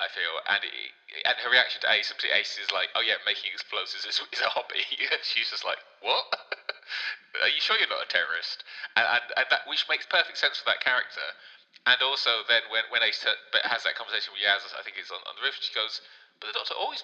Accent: British